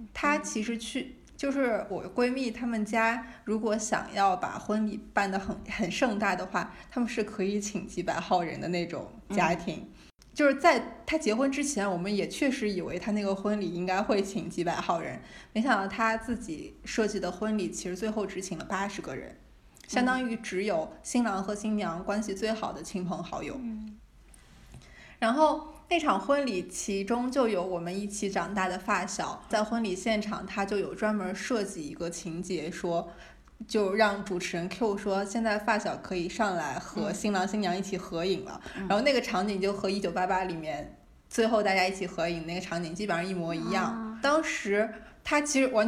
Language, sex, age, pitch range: Chinese, female, 20-39, 185-230 Hz